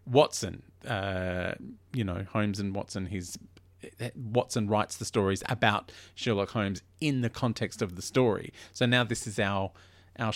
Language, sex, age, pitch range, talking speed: English, male, 40-59, 105-155 Hz, 155 wpm